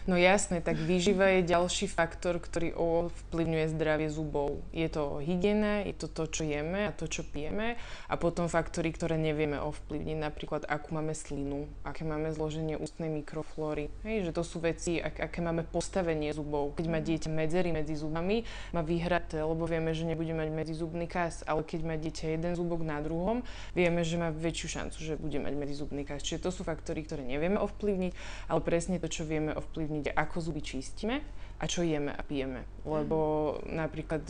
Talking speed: 180 wpm